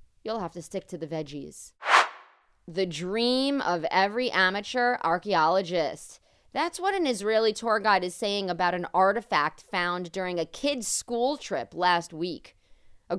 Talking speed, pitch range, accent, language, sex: 150 wpm, 170-225 Hz, American, English, female